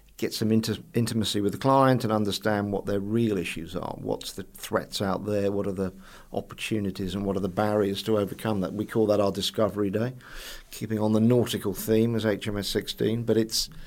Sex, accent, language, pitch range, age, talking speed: male, British, English, 100-115 Hz, 50-69, 205 wpm